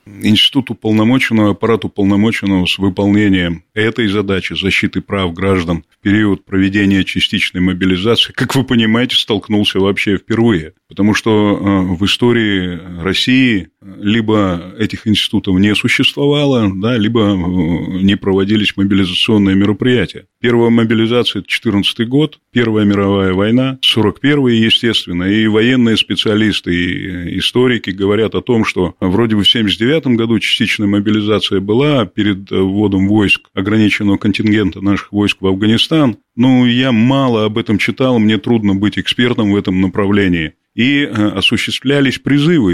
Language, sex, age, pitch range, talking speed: Russian, male, 30-49, 95-115 Hz, 125 wpm